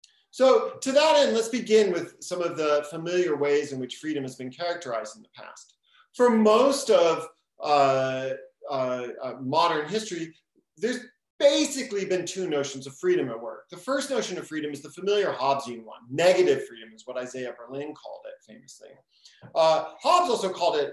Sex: male